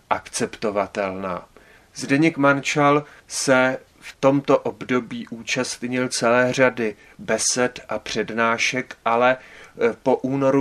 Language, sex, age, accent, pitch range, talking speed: Czech, male, 30-49, native, 115-125 Hz, 85 wpm